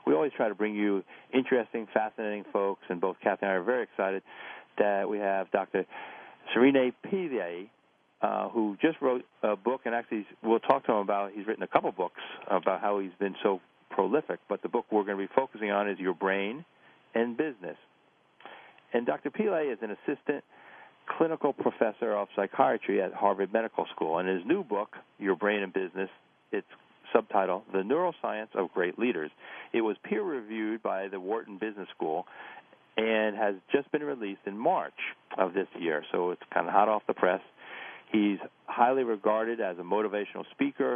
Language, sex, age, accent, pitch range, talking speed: English, male, 50-69, American, 100-115 Hz, 180 wpm